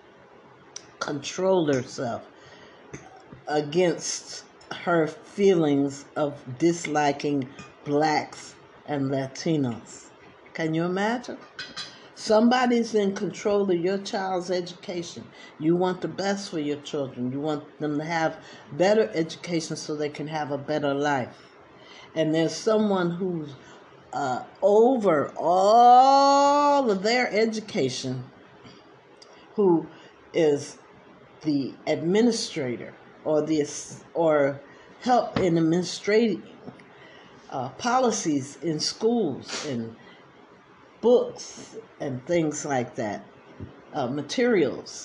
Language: English